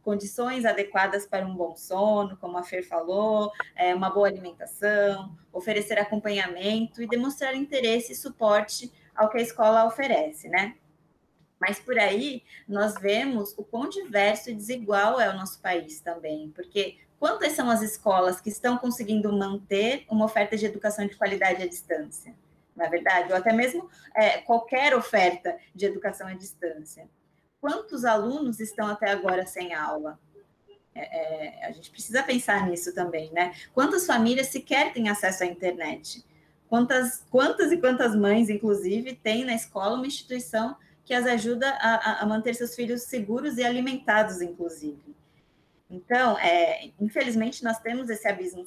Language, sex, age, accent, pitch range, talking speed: Portuguese, female, 20-39, Brazilian, 185-240 Hz, 155 wpm